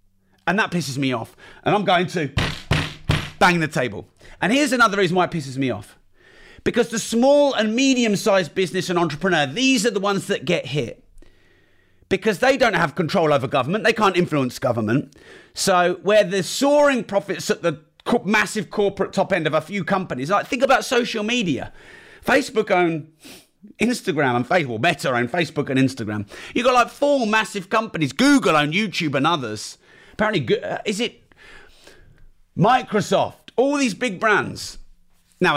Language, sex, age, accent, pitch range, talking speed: English, male, 30-49, British, 140-220 Hz, 165 wpm